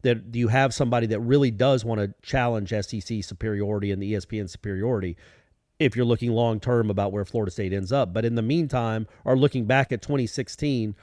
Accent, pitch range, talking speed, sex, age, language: American, 110-160 Hz, 190 wpm, male, 40-59, English